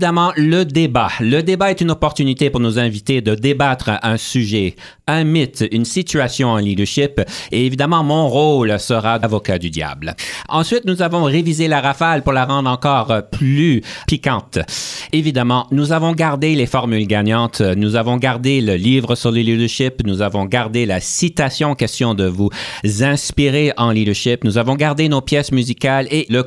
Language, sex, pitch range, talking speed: French, male, 115-145 Hz, 170 wpm